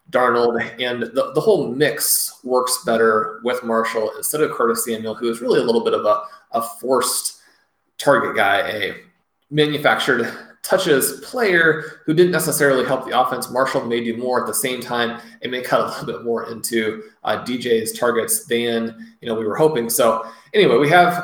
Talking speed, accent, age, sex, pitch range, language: 185 wpm, American, 30-49, male, 120-145 Hz, English